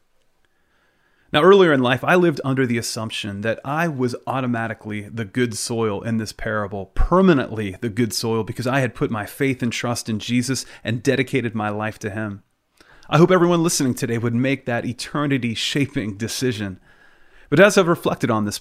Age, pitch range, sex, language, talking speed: 30-49, 110-140 Hz, male, English, 175 wpm